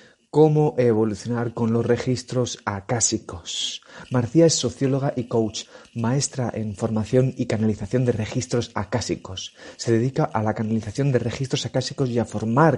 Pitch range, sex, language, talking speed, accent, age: 110-125 Hz, male, Spanish, 140 wpm, Spanish, 30-49